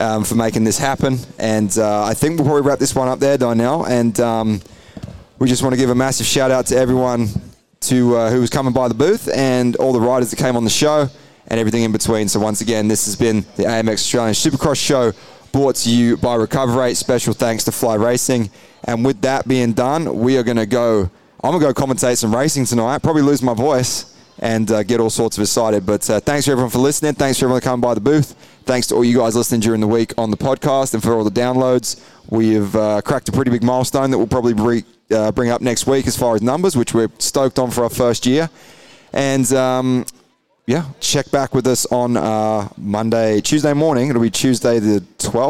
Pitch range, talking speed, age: 110-135 Hz, 230 wpm, 20-39